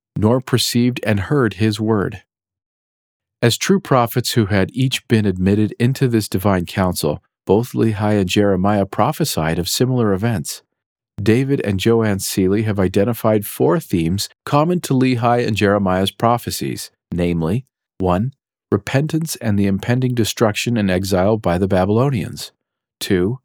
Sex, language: male, English